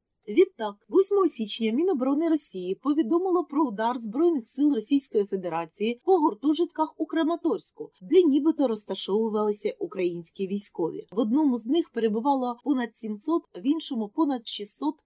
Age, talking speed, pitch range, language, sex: 30-49, 130 wpm, 225-315 Hz, Ukrainian, female